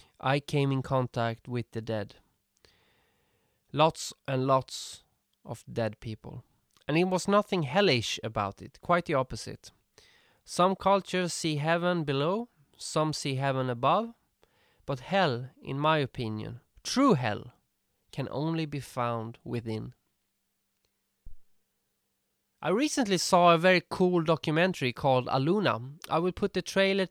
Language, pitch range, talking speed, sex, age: English, 130-175 Hz, 130 wpm, male, 20-39